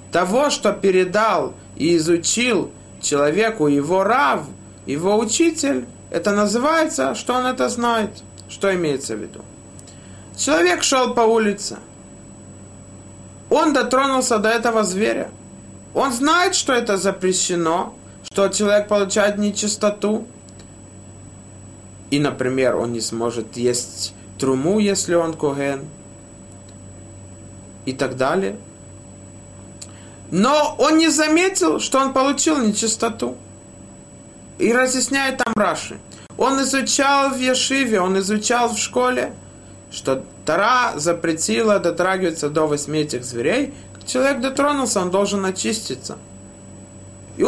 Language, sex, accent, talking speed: Russian, male, native, 105 wpm